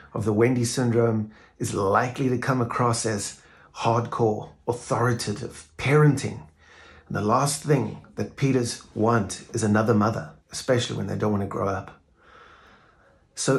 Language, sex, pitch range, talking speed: English, male, 100-130 Hz, 140 wpm